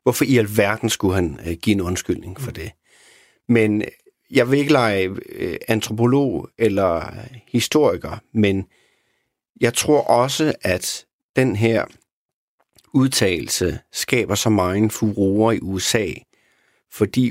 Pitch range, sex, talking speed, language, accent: 95-125 Hz, male, 115 wpm, Danish, native